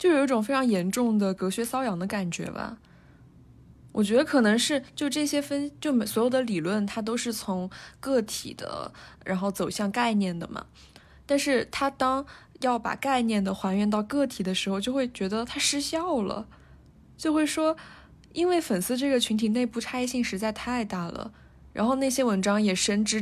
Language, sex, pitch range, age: Chinese, female, 195-255 Hz, 20-39